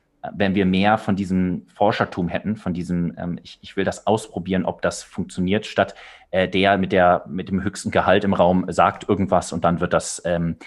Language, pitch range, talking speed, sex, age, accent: German, 90-125 Hz, 200 wpm, male, 30-49, German